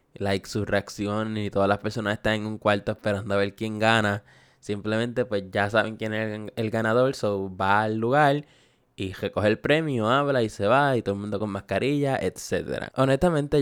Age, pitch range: 10-29, 105-125 Hz